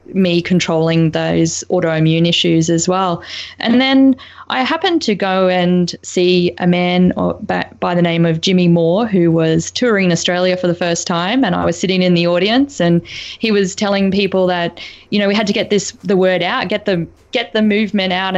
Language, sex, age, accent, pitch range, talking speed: English, female, 20-39, Australian, 165-190 Hz, 200 wpm